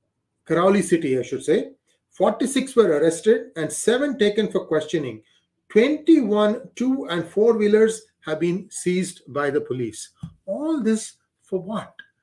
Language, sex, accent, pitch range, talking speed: English, male, Indian, 165-230 Hz, 135 wpm